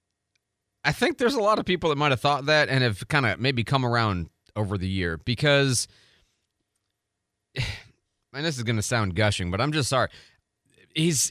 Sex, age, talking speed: male, 30-49, 185 wpm